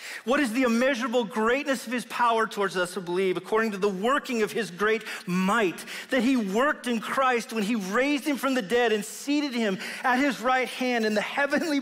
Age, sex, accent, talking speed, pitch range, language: 40-59, male, American, 215 wpm, 175-265 Hz, English